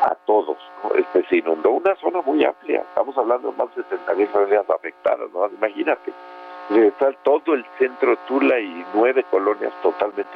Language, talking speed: Spanish, 180 wpm